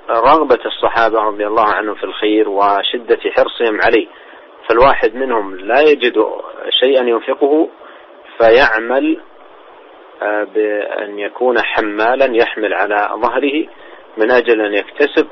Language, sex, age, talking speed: Indonesian, male, 40-59, 100 wpm